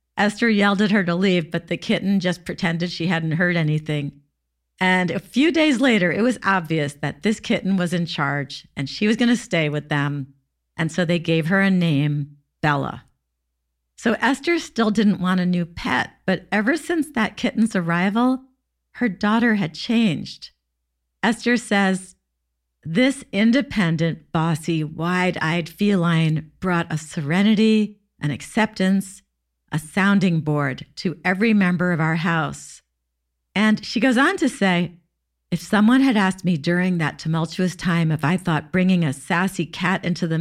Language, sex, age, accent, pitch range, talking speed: English, female, 50-69, American, 155-210 Hz, 160 wpm